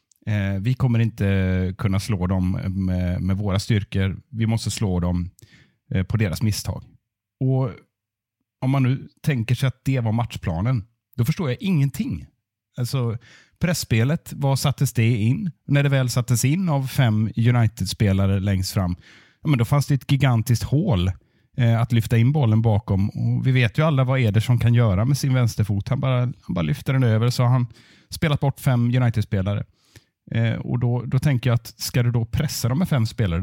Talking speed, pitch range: 180 wpm, 105-130 Hz